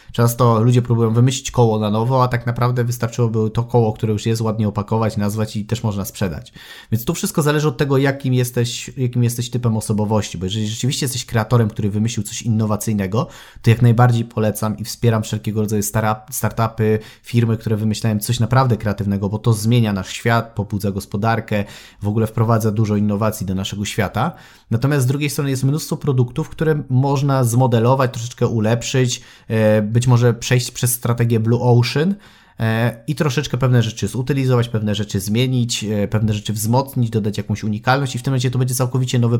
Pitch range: 110-125 Hz